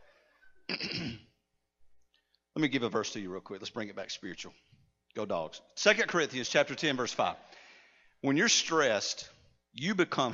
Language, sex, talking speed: English, male, 155 wpm